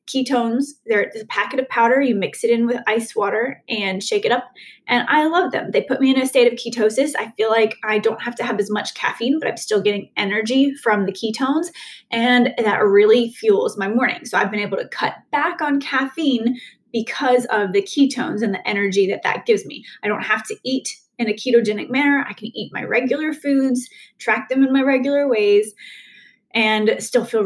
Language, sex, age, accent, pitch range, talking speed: English, female, 20-39, American, 215-275 Hz, 210 wpm